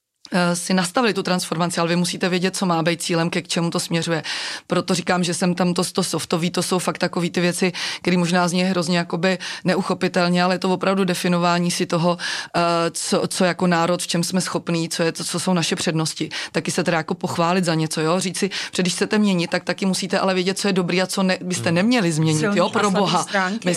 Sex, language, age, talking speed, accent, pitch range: female, Czech, 30-49, 220 wpm, native, 170-185 Hz